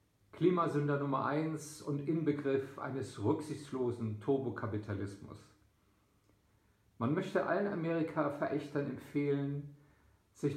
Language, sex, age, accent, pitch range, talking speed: German, male, 50-69, German, 105-150 Hz, 80 wpm